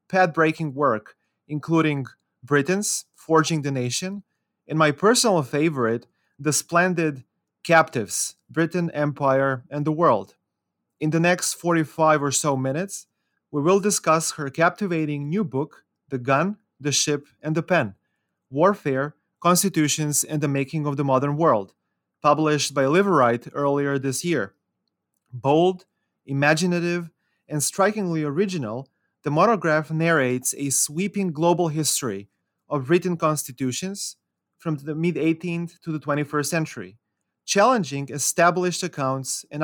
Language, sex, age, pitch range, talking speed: English, male, 30-49, 140-175 Hz, 125 wpm